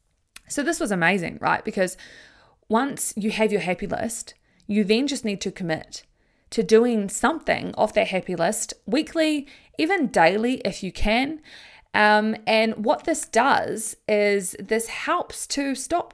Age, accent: 20-39, Australian